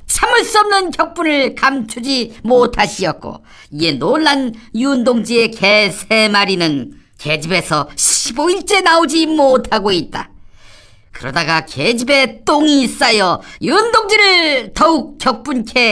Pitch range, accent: 225-325 Hz, Korean